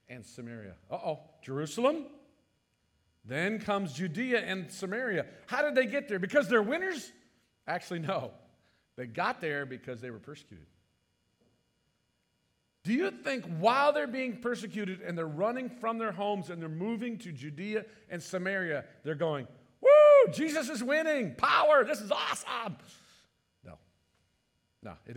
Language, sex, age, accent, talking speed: English, male, 50-69, American, 145 wpm